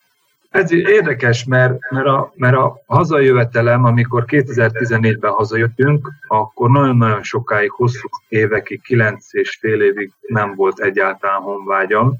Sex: male